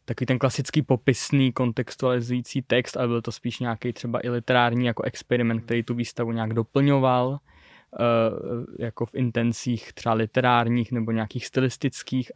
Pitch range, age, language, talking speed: 120-135 Hz, 20-39, Czech, 145 wpm